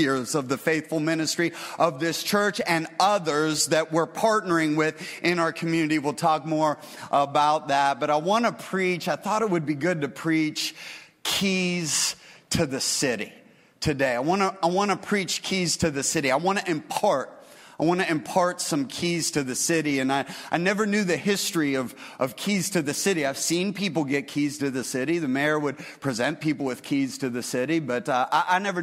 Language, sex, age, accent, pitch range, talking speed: English, male, 40-59, American, 145-180 Hz, 200 wpm